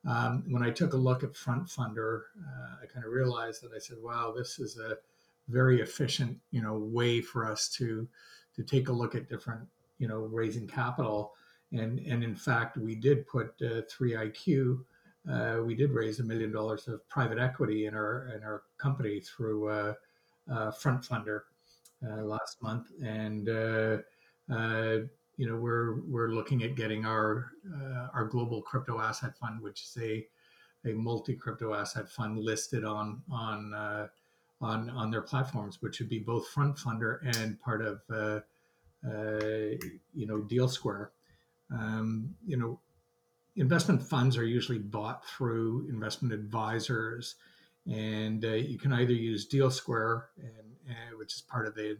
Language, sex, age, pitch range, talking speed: English, male, 50-69, 110-125 Hz, 165 wpm